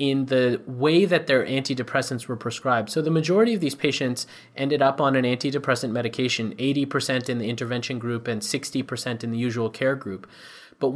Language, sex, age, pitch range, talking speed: English, male, 30-49, 125-150 Hz, 180 wpm